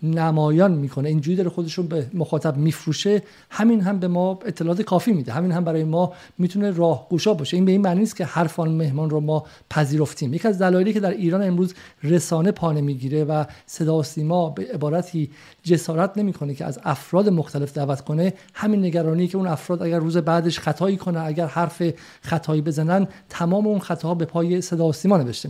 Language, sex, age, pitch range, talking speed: Persian, male, 50-69, 155-185 Hz, 185 wpm